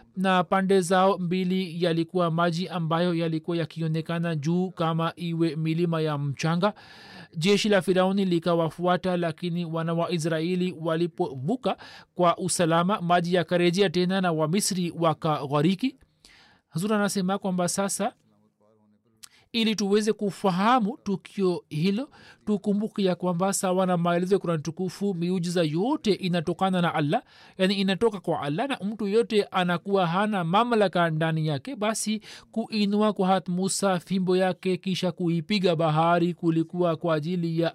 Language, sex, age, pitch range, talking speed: Swahili, male, 40-59, 165-195 Hz, 130 wpm